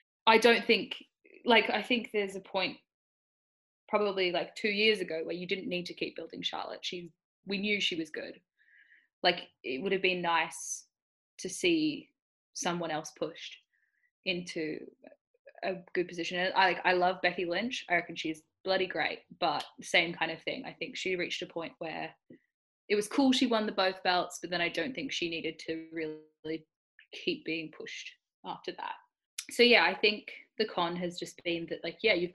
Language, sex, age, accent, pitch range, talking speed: English, female, 10-29, Australian, 165-210 Hz, 185 wpm